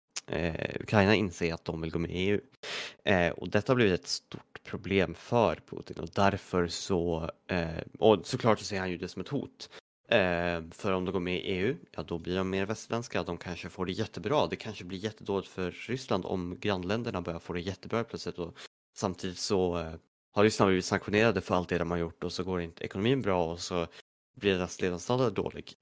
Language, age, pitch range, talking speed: Swedish, 30-49, 85-105 Hz, 215 wpm